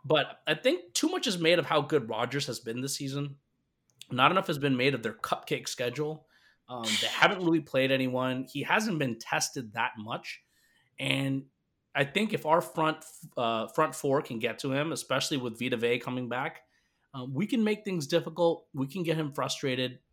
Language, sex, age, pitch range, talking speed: English, male, 30-49, 120-155 Hz, 195 wpm